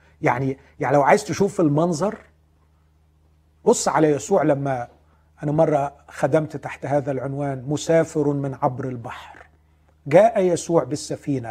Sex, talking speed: male, 120 wpm